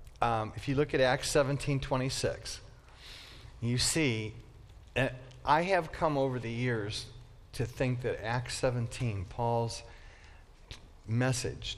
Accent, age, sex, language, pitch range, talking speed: American, 50-69, male, English, 110-135 Hz, 125 wpm